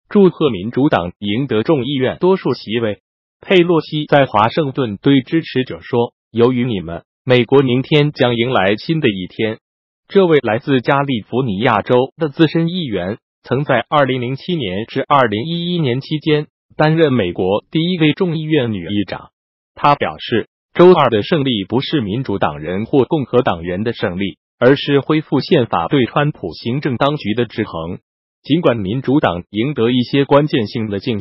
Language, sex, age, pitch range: Chinese, male, 20-39, 110-155 Hz